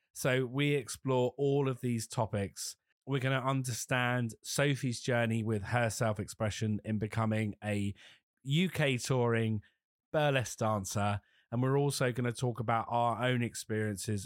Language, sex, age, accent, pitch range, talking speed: English, male, 30-49, British, 105-125 Hz, 145 wpm